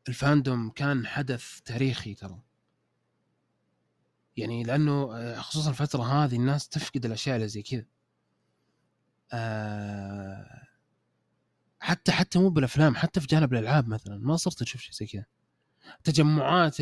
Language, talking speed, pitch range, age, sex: Arabic, 115 wpm, 115-155 Hz, 20-39, male